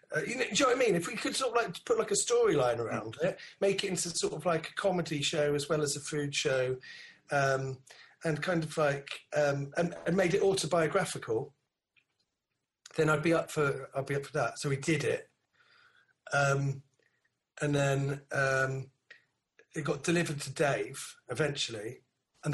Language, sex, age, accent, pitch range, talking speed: English, male, 40-59, British, 150-225 Hz, 190 wpm